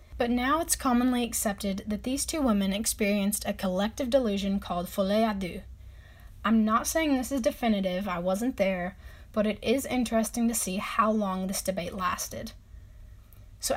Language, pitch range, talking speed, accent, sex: English, 195-240 Hz, 165 wpm, American, female